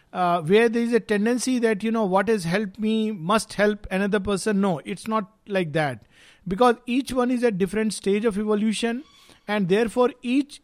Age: 50-69